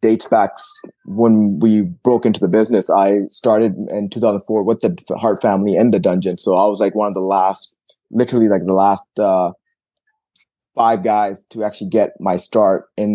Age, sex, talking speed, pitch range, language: 20-39, male, 185 wpm, 95-110 Hz, English